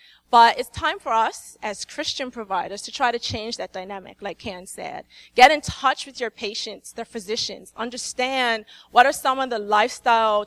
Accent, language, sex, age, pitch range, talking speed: American, English, female, 20-39, 210-260 Hz, 185 wpm